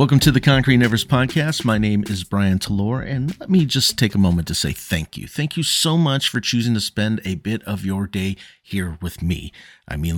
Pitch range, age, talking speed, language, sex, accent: 95-135 Hz, 50-69, 235 wpm, English, male, American